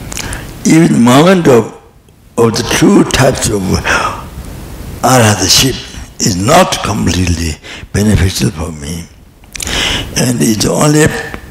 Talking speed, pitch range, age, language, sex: 95 wpm, 95-125 Hz, 60-79, English, male